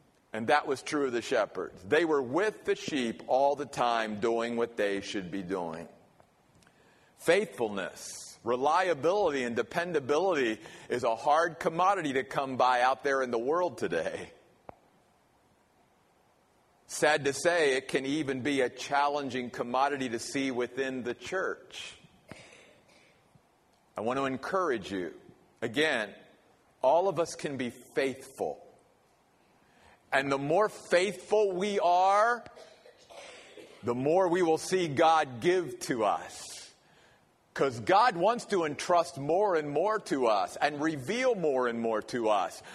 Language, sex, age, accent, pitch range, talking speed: English, male, 50-69, American, 130-190 Hz, 135 wpm